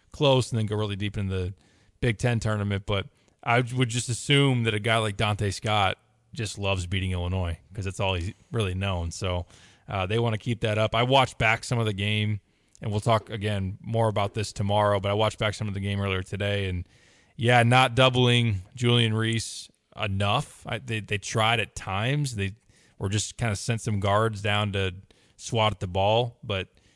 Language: English